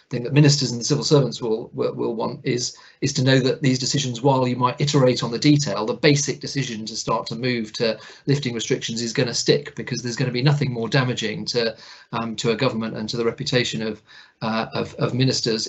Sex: male